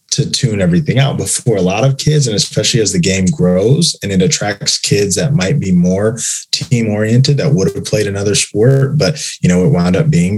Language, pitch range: English, 105-145 Hz